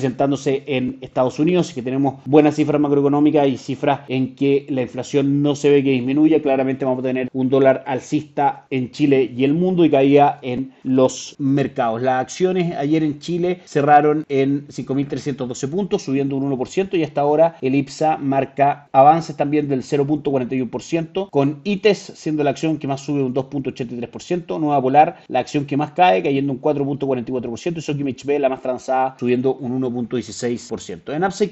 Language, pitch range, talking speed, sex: Spanish, 125-150 Hz, 175 wpm, male